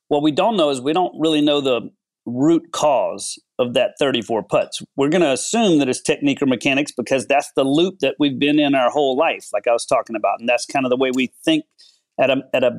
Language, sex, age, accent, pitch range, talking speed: English, male, 40-59, American, 125-150 Hz, 250 wpm